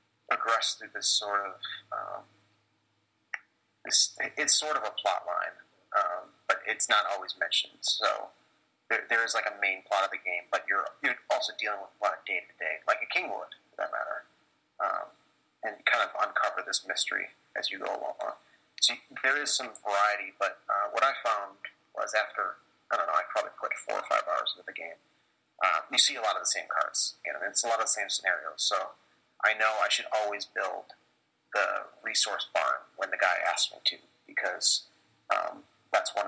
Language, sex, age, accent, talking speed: English, male, 30-49, American, 205 wpm